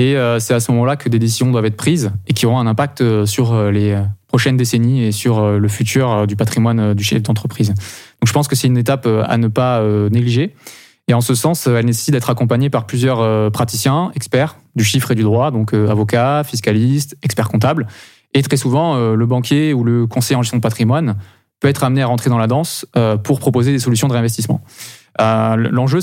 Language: French